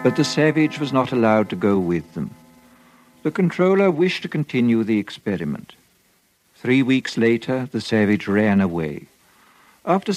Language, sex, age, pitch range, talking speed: English, male, 60-79, 110-145 Hz, 150 wpm